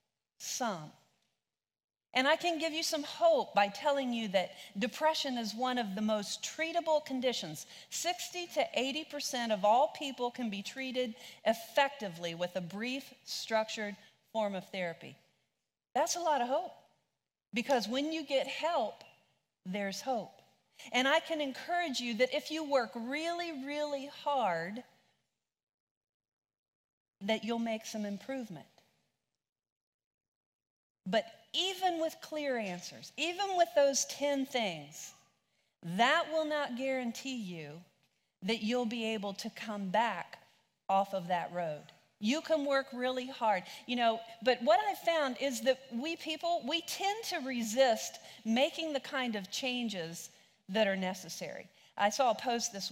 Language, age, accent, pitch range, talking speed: English, 40-59, American, 205-290 Hz, 140 wpm